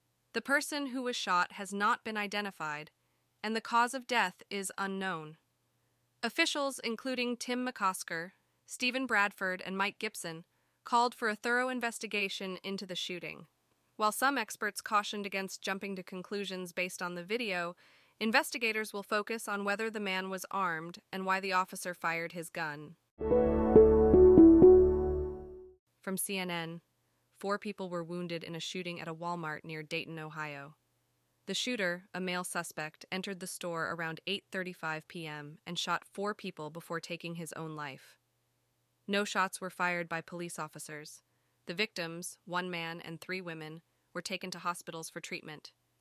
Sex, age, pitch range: female, 20-39, 165-205 Hz